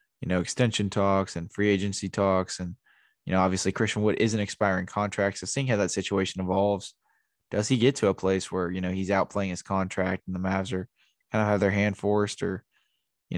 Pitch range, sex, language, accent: 95-110 Hz, male, English, American